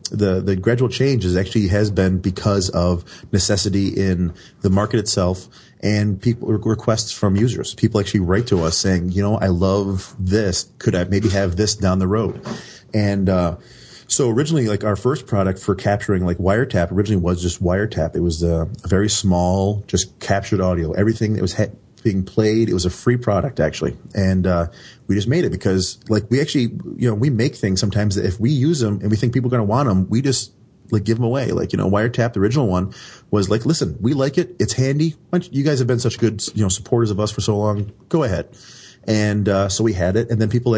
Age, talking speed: 30-49, 220 wpm